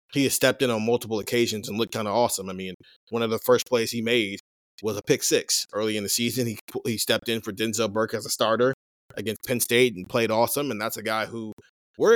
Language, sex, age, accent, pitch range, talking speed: English, male, 30-49, American, 110-140 Hz, 250 wpm